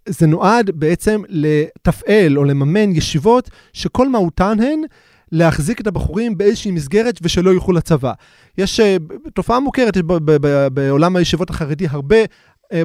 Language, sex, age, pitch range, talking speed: Hebrew, male, 30-49, 160-210 Hz, 140 wpm